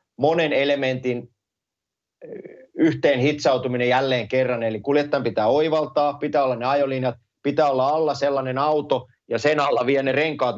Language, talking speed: Finnish, 135 wpm